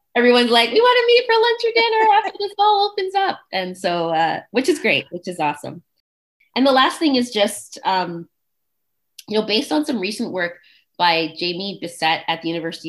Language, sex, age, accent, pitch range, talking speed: English, female, 20-39, American, 165-235 Hz, 205 wpm